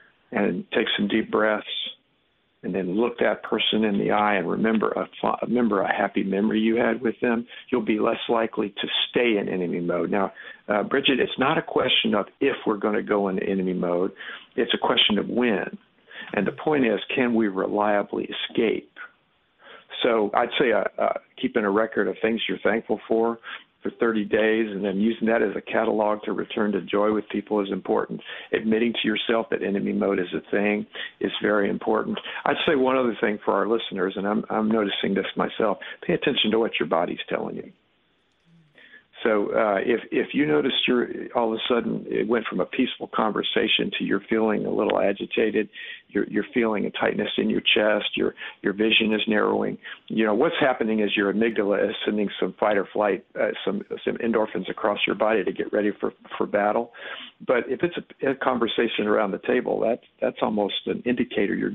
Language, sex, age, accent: English, male, 50-69, American